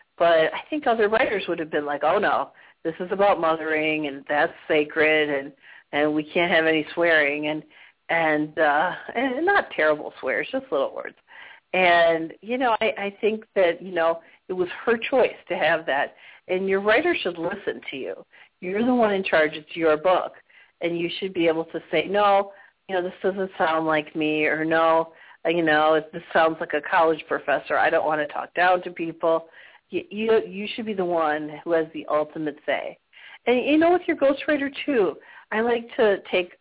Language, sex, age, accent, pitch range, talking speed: English, female, 50-69, American, 160-215 Hz, 200 wpm